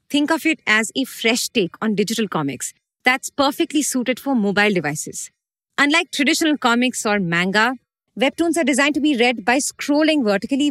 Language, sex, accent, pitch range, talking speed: English, female, Indian, 220-295 Hz, 170 wpm